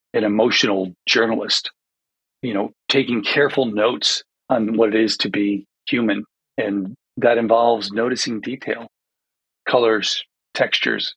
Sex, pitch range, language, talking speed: male, 110-135 Hz, English, 120 wpm